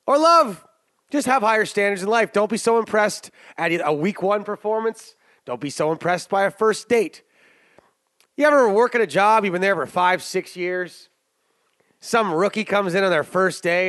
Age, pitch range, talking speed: 30-49, 175-220 Hz, 200 wpm